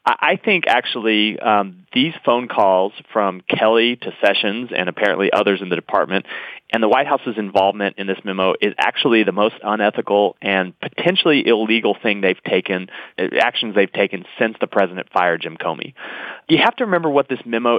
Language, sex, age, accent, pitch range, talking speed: English, male, 30-49, American, 105-150 Hz, 180 wpm